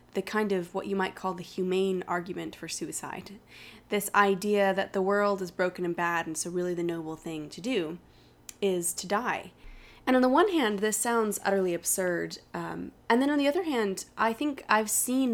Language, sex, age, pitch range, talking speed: English, female, 20-39, 180-215 Hz, 205 wpm